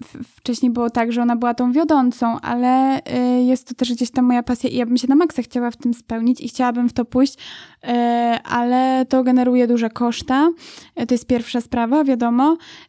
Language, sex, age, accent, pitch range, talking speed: Polish, female, 20-39, native, 245-265 Hz, 190 wpm